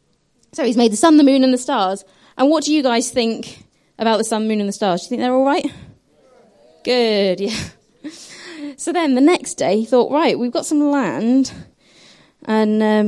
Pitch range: 195-260 Hz